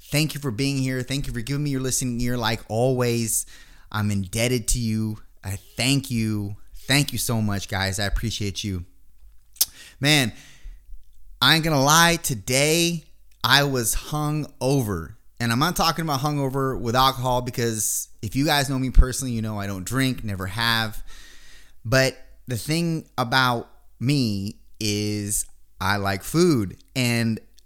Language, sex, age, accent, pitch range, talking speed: English, male, 20-39, American, 105-140 Hz, 155 wpm